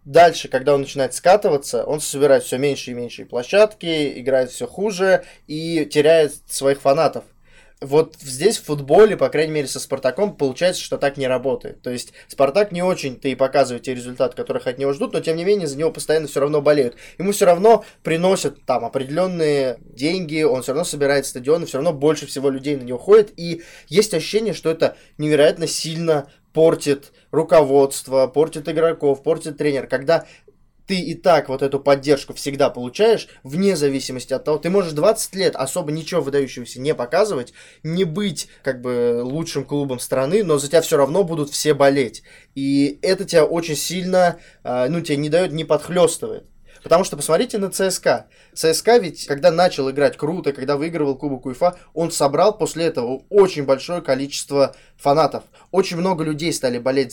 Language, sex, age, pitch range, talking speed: Russian, male, 20-39, 135-175 Hz, 175 wpm